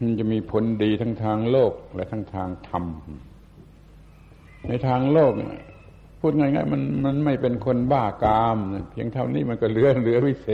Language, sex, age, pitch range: Thai, male, 70-89, 85-120 Hz